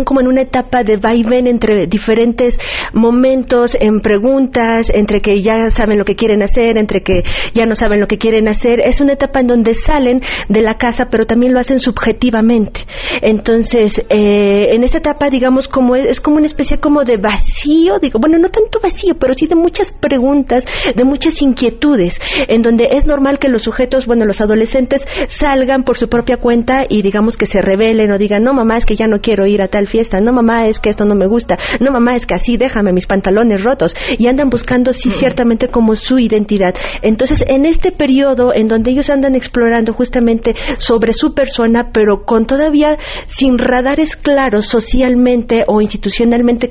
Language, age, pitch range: Spanish, 30-49, 220-265 Hz